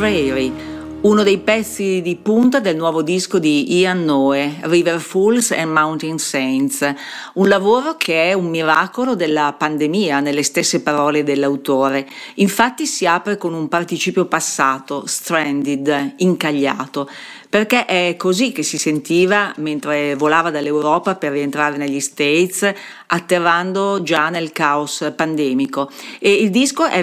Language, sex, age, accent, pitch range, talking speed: Italian, female, 50-69, native, 145-195 Hz, 130 wpm